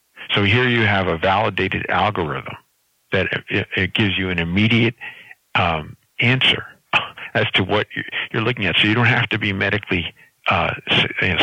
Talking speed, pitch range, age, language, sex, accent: 150 wpm, 90-110 Hz, 50-69, English, male, American